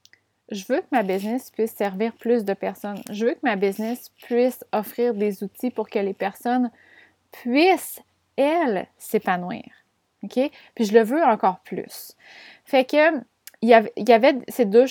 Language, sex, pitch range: French, female, 210-255 Hz